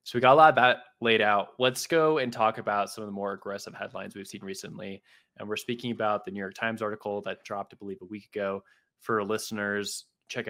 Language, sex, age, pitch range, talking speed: English, male, 20-39, 95-110 Hz, 245 wpm